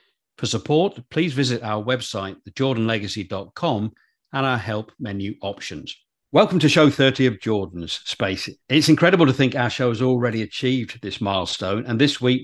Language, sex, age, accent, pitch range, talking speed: English, male, 50-69, British, 105-130 Hz, 160 wpm